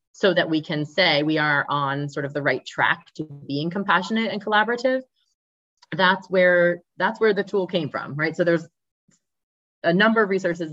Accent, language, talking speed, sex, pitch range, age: American, English, 185 wpm, female, 140-180 Hz, 20-39